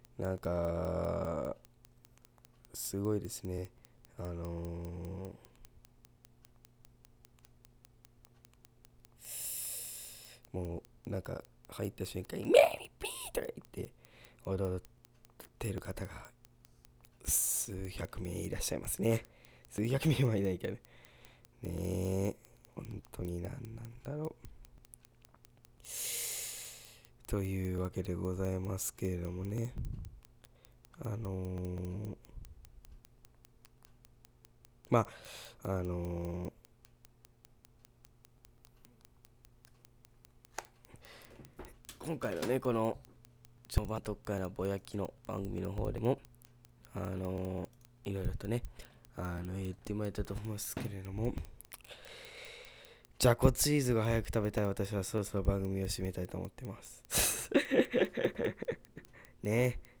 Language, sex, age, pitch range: Japanese, male, 20-39, 95-120 Hz